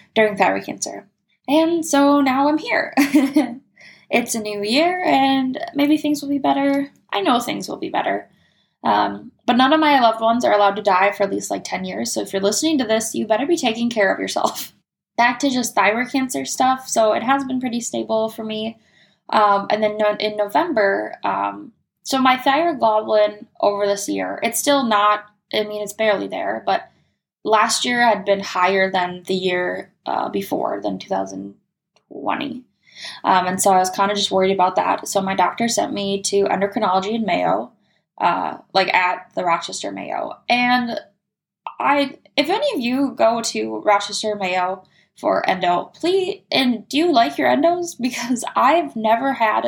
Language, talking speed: English, 180 wpm